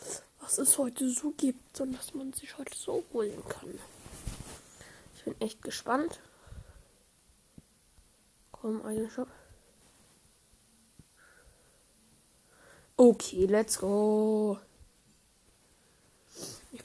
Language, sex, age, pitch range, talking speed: German, female, 10-29, 220-265 Hz, 80 wpm